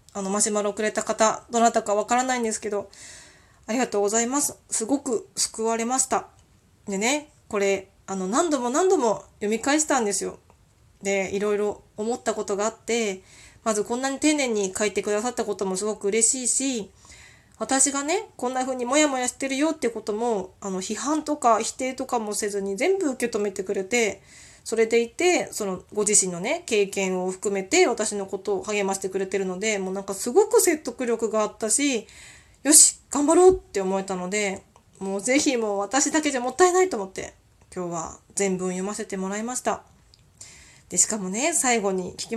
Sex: female